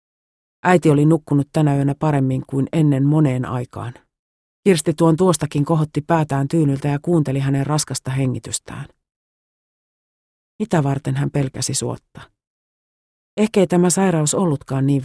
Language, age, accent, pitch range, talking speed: Finnish, 40-59, native, 135-170 Hz, 125 wpm